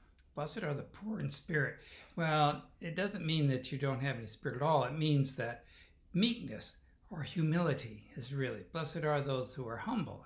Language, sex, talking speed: English, male, 185 wpm